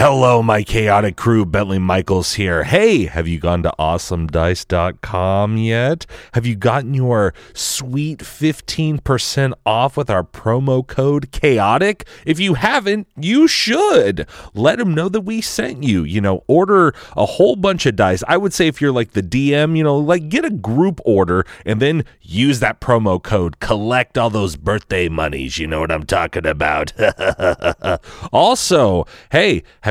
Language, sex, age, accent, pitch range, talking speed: English, male, 30-49, American, 85-135 Hz, 165 wpm